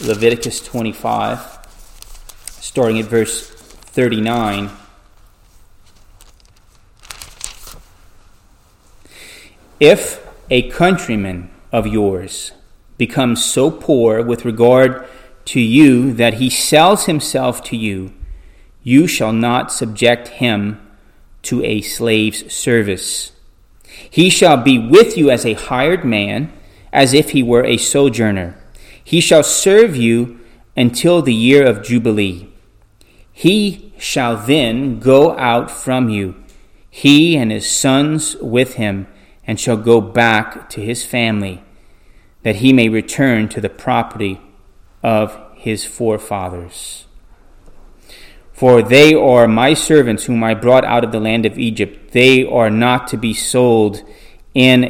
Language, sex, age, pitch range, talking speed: English, male, 30-49, 100-125 Hz, 120 wpm